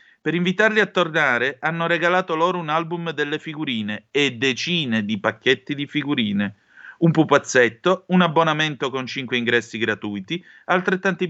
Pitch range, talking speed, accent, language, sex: 120-180 Hz, 140 wpm, native, Italian, male